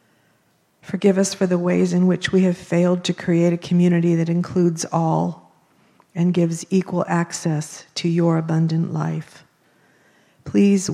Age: 50-69